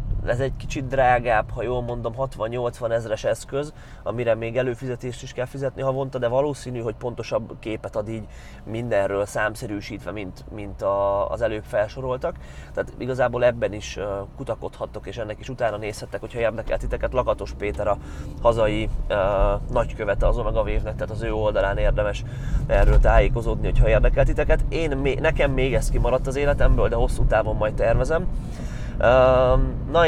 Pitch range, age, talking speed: 115-130 Hz, 30-49, 150 wpm